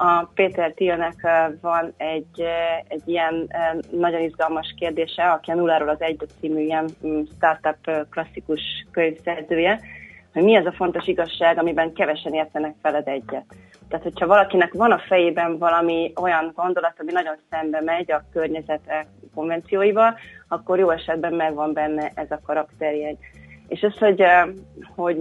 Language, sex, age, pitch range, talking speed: Hungarian, female, 30-49, 155-175 Hz, 145 wpm